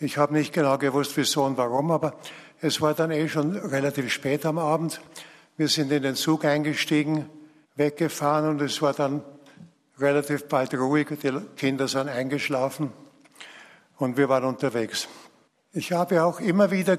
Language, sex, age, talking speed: German, male, 60-79, 160 wpm